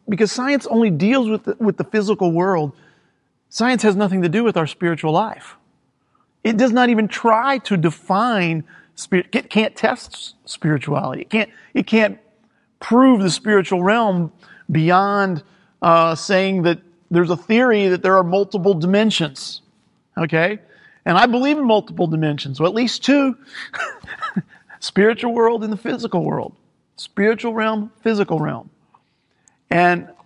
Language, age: English, 40-59